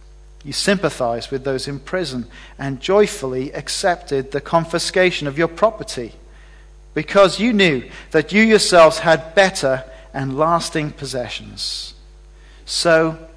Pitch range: 120-175 Hz